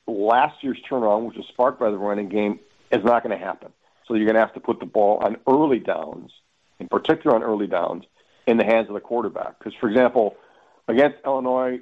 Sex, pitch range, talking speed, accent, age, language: male, 105-135 Hz, 220 wpm, American, 50-69, English